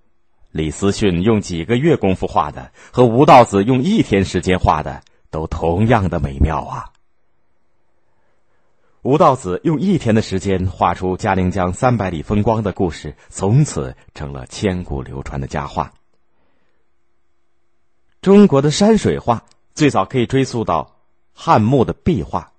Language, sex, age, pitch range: Chinese, male, 30-49, 80-120 Hz